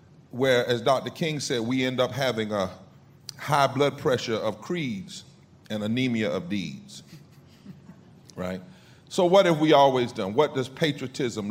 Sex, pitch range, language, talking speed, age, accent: male, 115-150 Hz, English, 150 wpm, 40-59, American